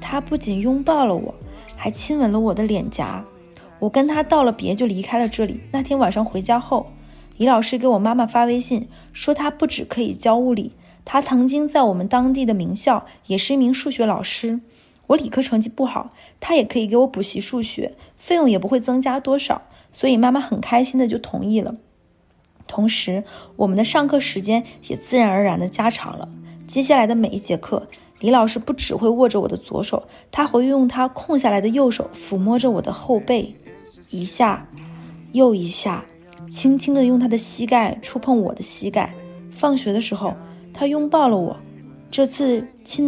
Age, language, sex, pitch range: 20-39, Chinese, female, 205-270 Hz